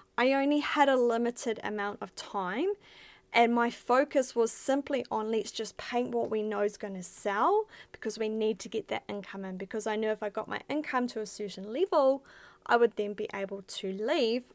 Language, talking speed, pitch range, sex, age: English, 210 wpm, 210-275 Hz, female, 10-29